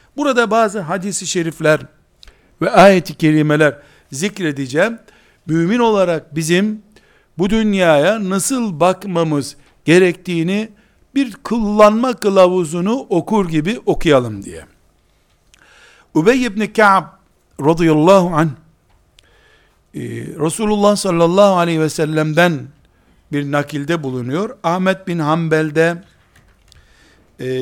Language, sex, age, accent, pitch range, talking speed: Turkish, male, 60-79, native, 145-195 Hz, 85 wpm